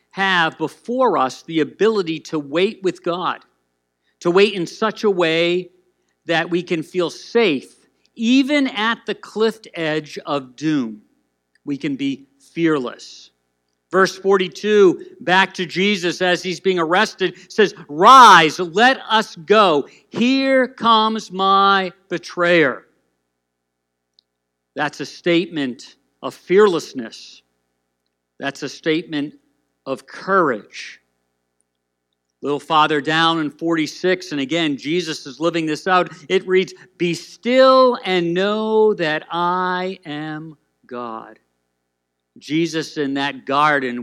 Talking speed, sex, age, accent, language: 115 wpm, male, 50-69, American, English